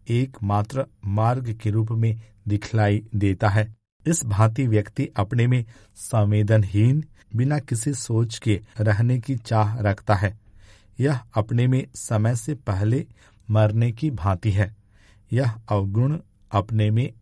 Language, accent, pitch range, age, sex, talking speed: Hindi, native, 105-125 Hz, 50-69, male, 130 wpm